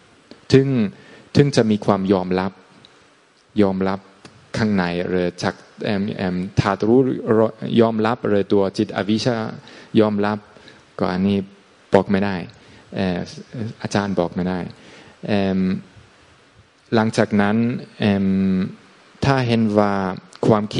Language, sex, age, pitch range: Thai, male, 20-39, 90-110 Hz